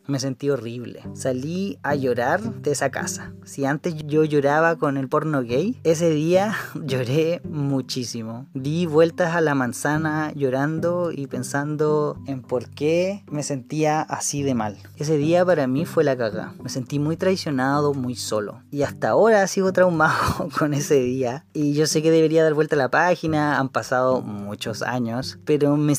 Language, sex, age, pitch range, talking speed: Spanish, female, 20-39, 130-160 Hz, 170 wpm